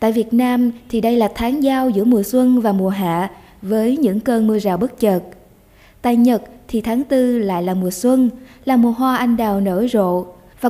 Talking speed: 215 wpm